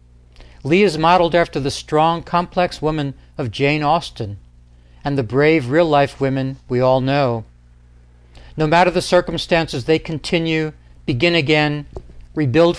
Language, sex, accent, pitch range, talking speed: English, male, American, 110-155 Hz, 130 wpm